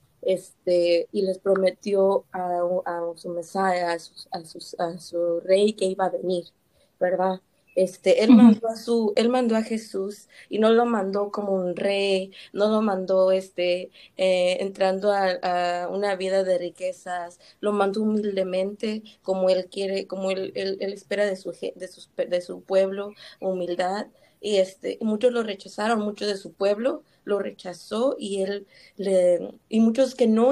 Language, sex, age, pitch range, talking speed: Spanish, female, 20-39, 185-210 Hz, 165 wpm